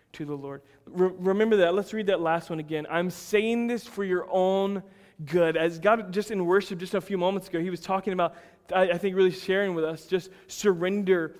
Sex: male